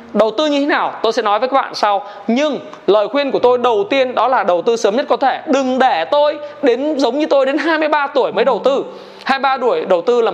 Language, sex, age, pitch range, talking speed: Vietnamese, male, 20-39, 220-300 Hz, 260 wpm